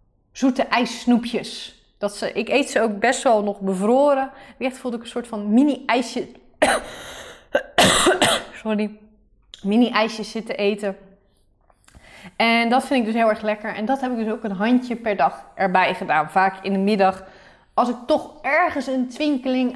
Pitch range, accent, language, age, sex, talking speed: 205-250 Hz, Dutch, Dutch, 20-39, female, 160 wpm